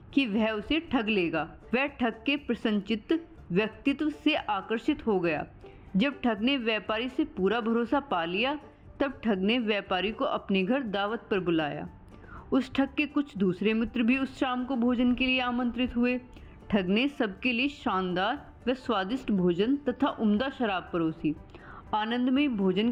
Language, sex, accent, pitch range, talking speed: Hindi, female, native, 200-270 Hz, 165 wpm